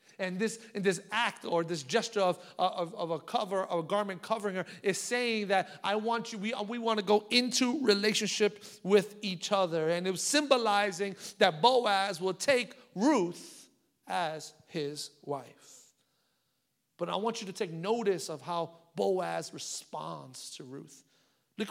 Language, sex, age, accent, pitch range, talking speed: English, male, 40-59, American, 180-260 Hz, 165 wpm